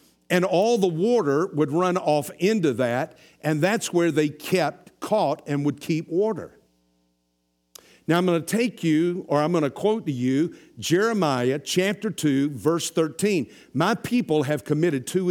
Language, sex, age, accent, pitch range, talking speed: English, male, 60-79, American, 140-195 Hz, 165 wpm